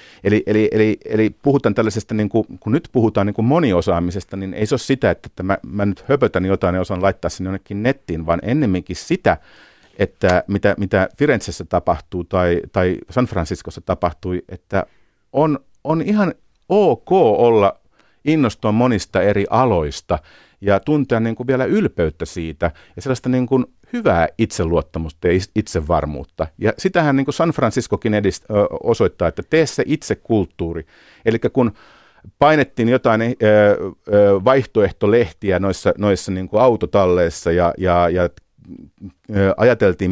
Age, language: 50-69, Finnish